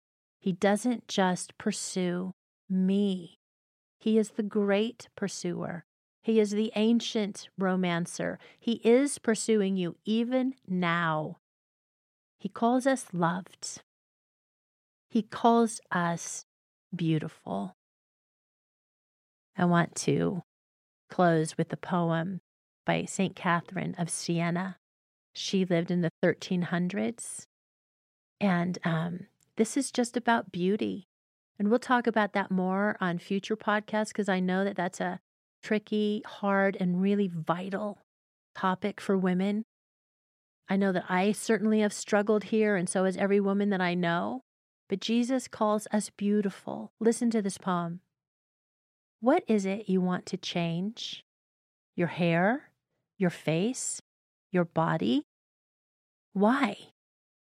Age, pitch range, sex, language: 40-59, 175-215 Hz, female, English